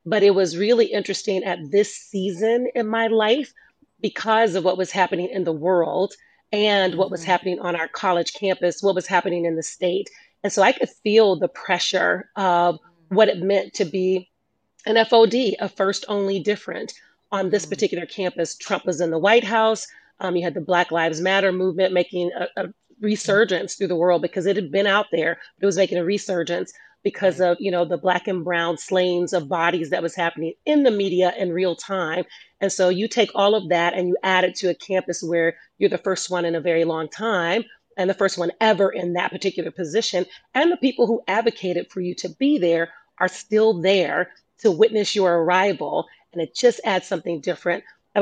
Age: 30-49